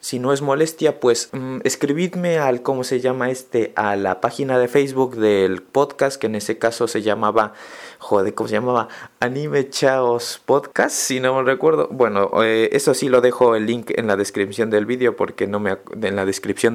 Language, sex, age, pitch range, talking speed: English, male, 20-39, 110-140 Hz, 200 wpm